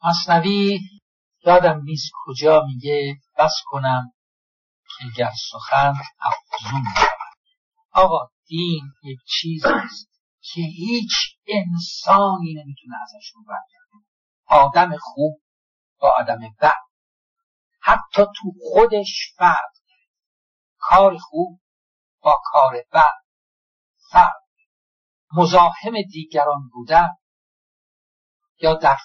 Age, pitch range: 50-69, 145-225 Hz